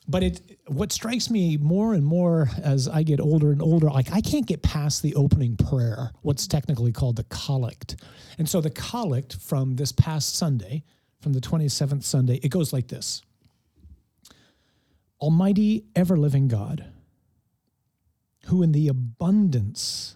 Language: English